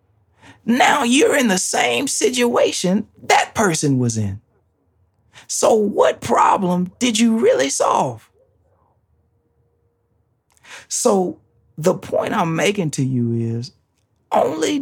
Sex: male